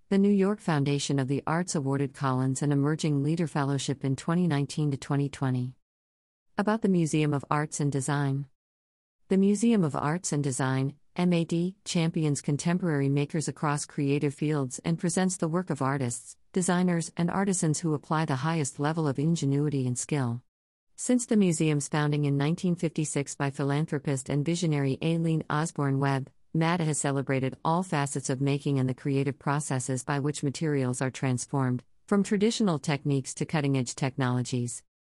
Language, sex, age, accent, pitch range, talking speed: English, female, 50-69, American, 135-165 Hz, 150 wpm